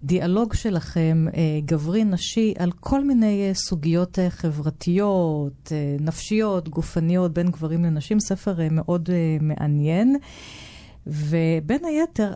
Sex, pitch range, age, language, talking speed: female, 150-190 Hz, 40-59, Hebrew, 90 wpm